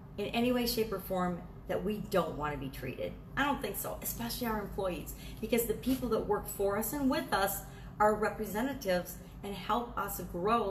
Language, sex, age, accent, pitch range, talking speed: English, female, 40-59, American, 170-230 Hz, 200 wpm